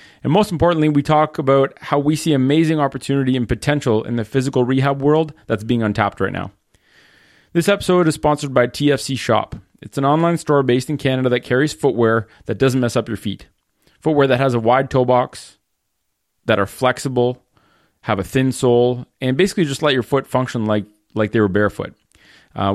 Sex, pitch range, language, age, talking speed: male, 115-145 Hz, English, 30-49, 195 wpm